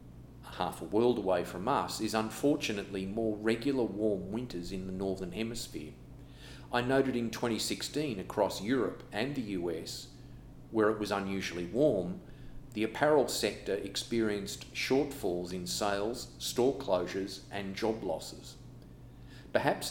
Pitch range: 95-120 Hz